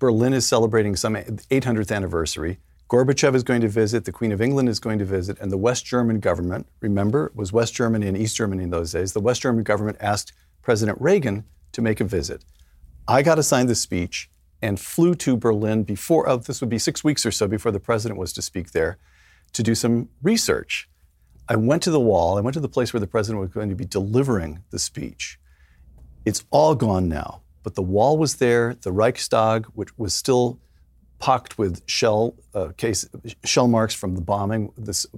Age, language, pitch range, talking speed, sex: 50-69, English, 90-120 Hz, 205 wpm, male